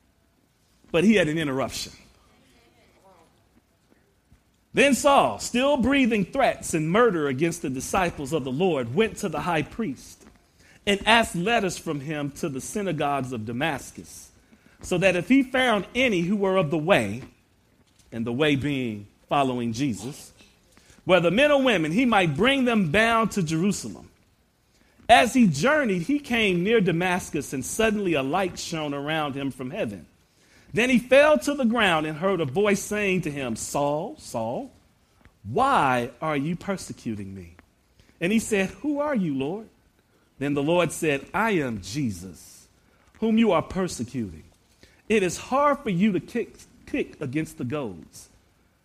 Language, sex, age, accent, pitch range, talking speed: English, male, 40-59, American, 135-215 Hz, 155 wpm